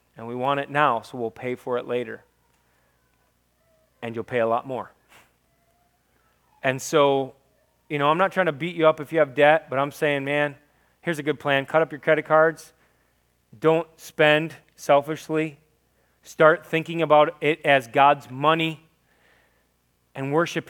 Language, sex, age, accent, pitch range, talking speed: English, male, 30-49, American, 115-155 Hz, 165 wpm